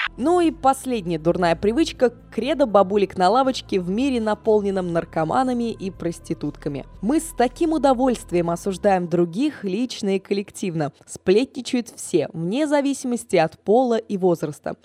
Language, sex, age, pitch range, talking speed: Russian, female, 20-39, 185-250 Hz, 130 wpm